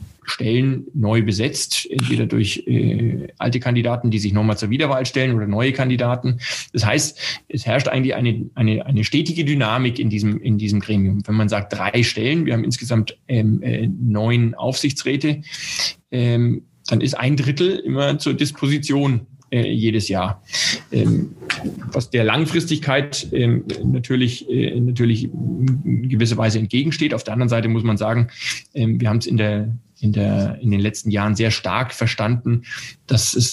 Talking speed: 160 wpm